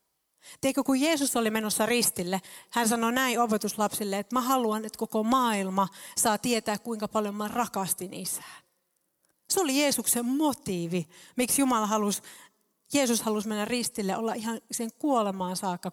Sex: female